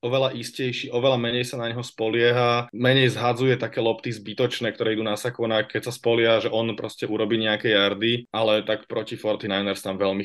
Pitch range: 100-110 Hz